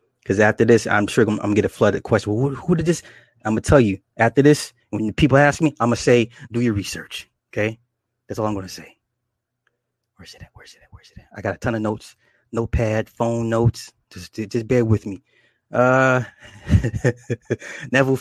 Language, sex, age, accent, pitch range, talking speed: English, male, 20-39, American, 115-140 Hz, 220 wpm